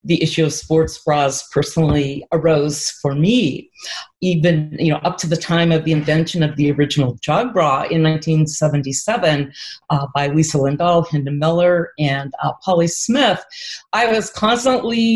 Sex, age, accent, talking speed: female, 40-59, American, 155 wpm